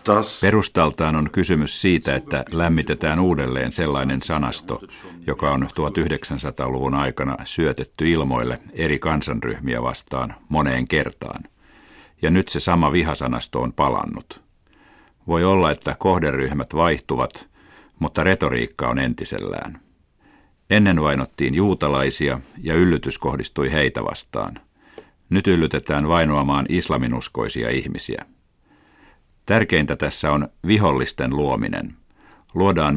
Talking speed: 100 wpm